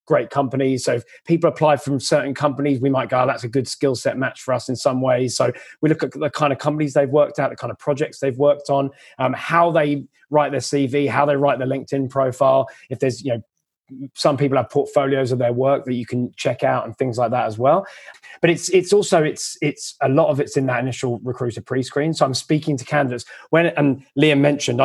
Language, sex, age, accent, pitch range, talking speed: English, male, 20-39, British, 125-145 Hz, 240 wpm